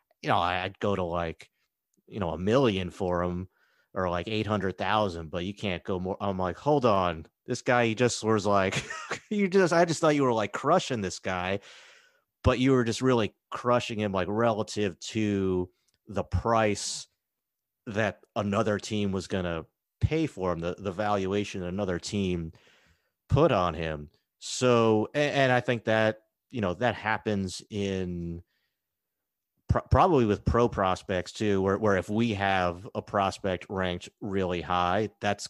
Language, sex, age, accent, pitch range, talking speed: English, male, 30-49, American, 90-110 Hz, 165 wpm